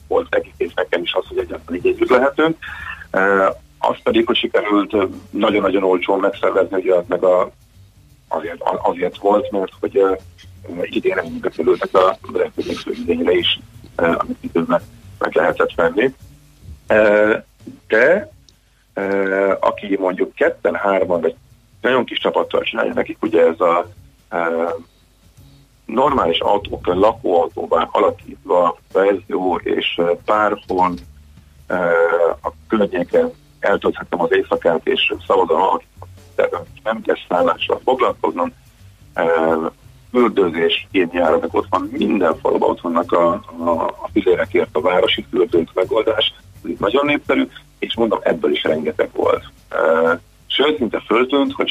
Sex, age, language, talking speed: male, 40-59, Hungarian, 125 wpm